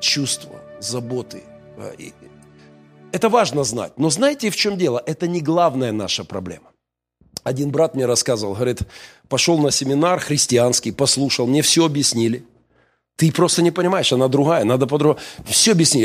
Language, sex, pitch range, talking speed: Russian, male, 120-185 Hz, 140 wpm